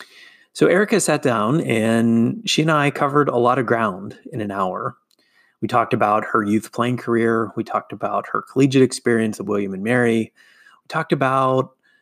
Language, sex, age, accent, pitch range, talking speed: English, male, 30-49, American, 105-130 Hz, 180 wpm